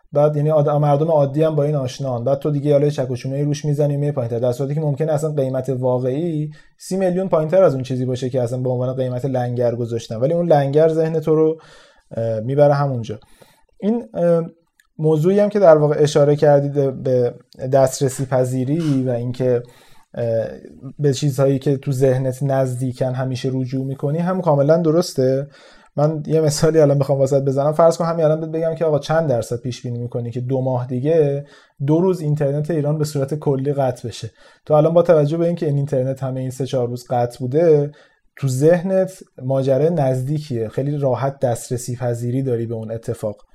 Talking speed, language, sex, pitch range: 180 wpm, Persian, male, 130-155 Hz